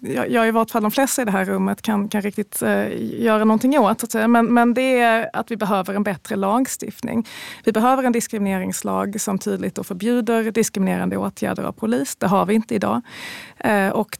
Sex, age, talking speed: female, 30-49, 185 wpm